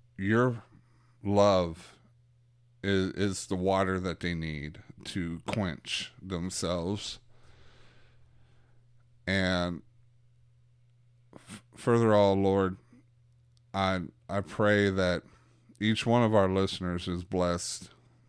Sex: male